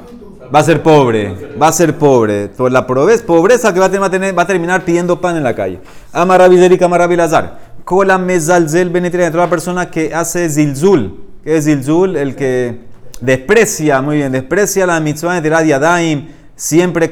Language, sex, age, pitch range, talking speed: Spanish, male, 30-49, 135-175 Hz, 170 wpm